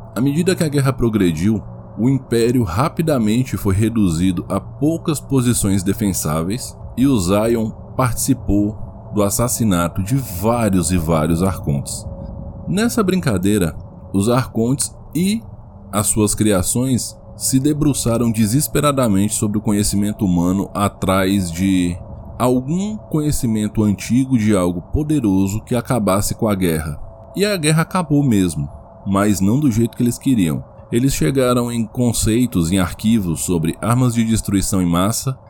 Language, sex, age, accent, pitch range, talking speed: Portuguese, male, 20-39, Brazilian, 95-125 Hz, 130 wpm